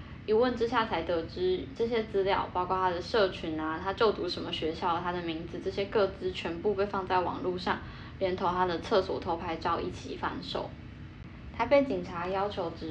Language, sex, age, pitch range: Chinese, female, 10-29, 175-195 Hz